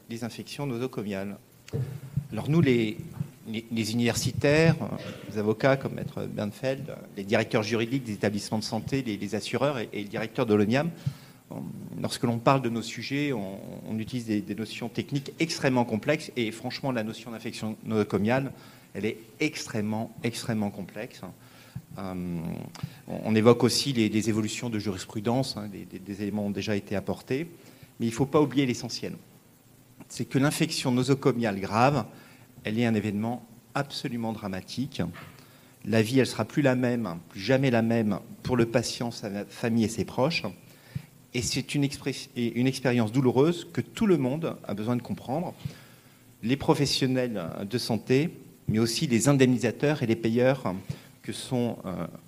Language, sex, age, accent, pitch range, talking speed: French, male, 40-59, French, 110-135 Hz, 160 wpm